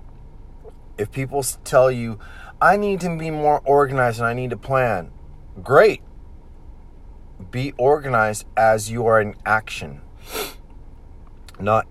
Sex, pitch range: male, 85-105 Hz